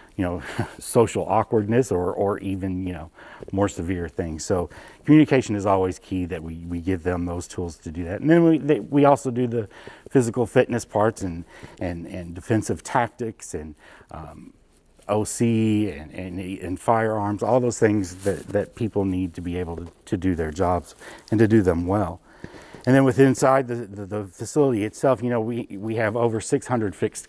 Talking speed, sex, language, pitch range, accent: 190 wpm, male, English, 95-110 Hz, American